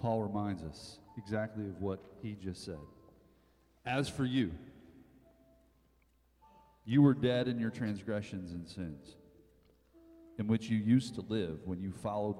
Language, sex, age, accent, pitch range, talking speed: English, male, 40-59, American, 100-135 Hz, 140 wpm